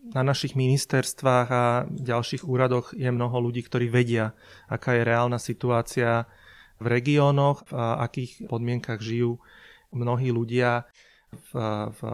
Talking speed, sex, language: 120 wpm, male, Slovak